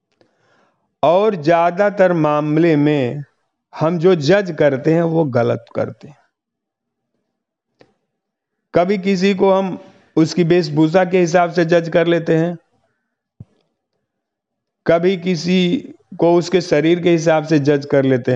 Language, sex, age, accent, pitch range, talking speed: Hindi, male, 50-69, native, 145-180 Hz, 120 wpm